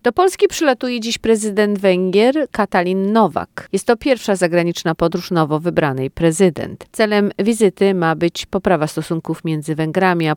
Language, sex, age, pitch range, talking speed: Polish, female, 50-69, 165-230 Hz, 145 wpm